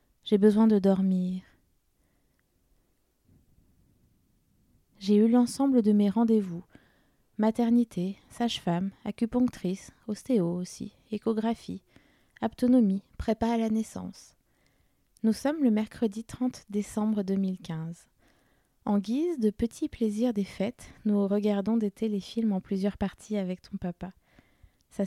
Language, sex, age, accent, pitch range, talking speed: French, female, 20-39, French, 190-225 Hz, 110 wpm